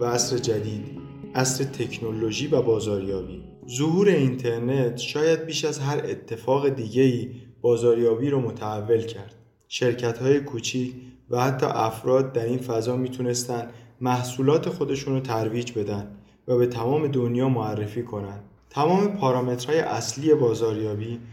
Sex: male